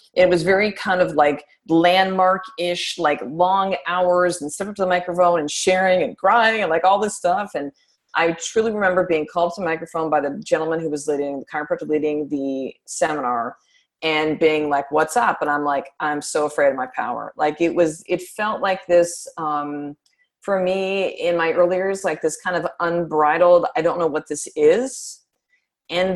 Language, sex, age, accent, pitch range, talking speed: English, female, 30-49, American, 160-190 Hz, 195 wpm